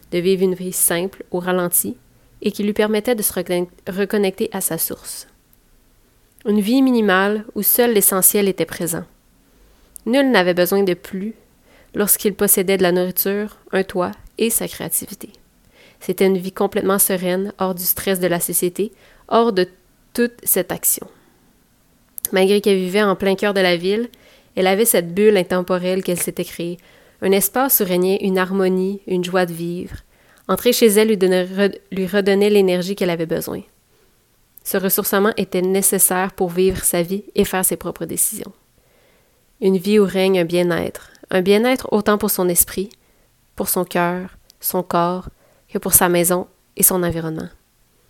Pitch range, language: 180-205 Hz, French